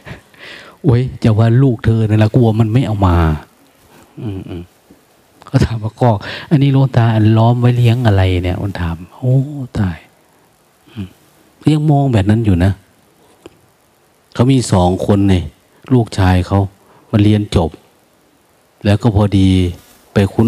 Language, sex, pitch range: Thai, male, 95-120 Hz